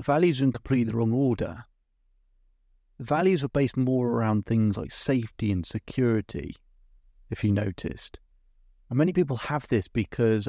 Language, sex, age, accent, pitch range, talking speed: English, male, 30-49, British, 100-130 Hz, 155 wpm